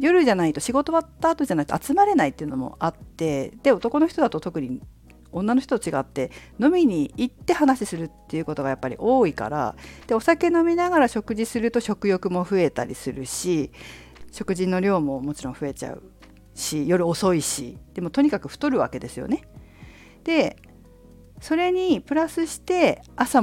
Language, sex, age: Japanese, female, 50-69